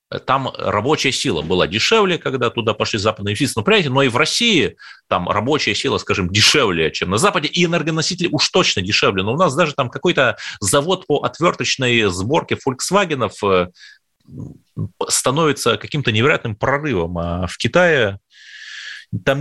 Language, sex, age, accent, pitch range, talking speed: Russian, male, 30-49, native, 115-175 Hz, 140 wpm